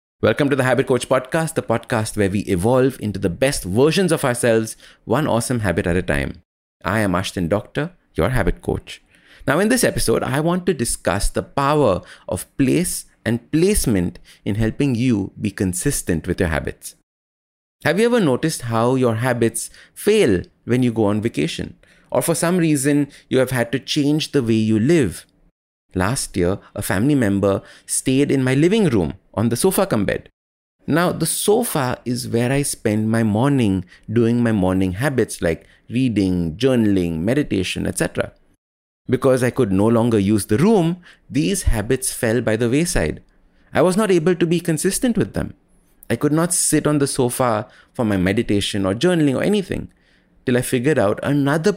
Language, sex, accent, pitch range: English, male, Indian, 100-145 Hz